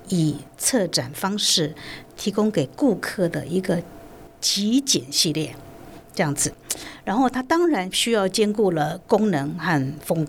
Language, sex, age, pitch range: Chinese, female, 50-69, 155-205 Hz